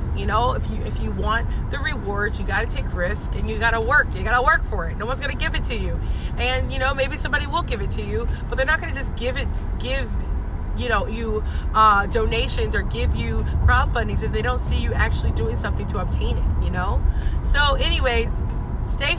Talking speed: 240 wpm